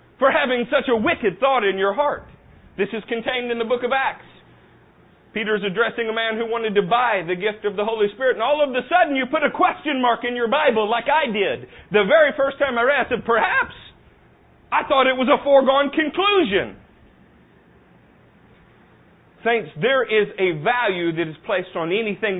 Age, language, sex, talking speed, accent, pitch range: 40-59, English, male, 200 wpm, American, 150-235 Hz